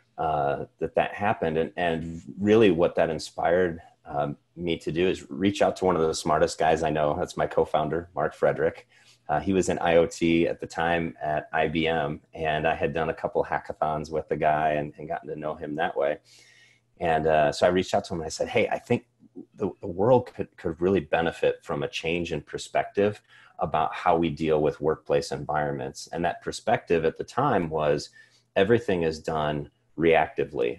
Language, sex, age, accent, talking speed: English, male, 30-49, American, 200 wpm